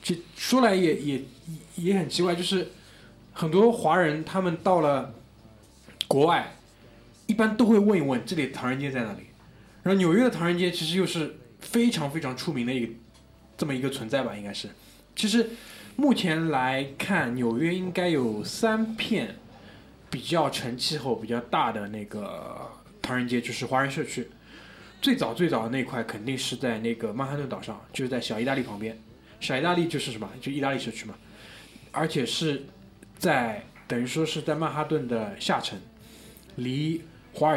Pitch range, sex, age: 120-170 Hz, male, 20-39